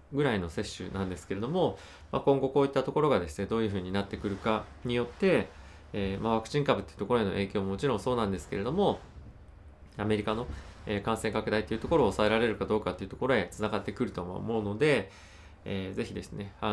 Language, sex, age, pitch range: Japanese, male, 20-39, 90-115 Hz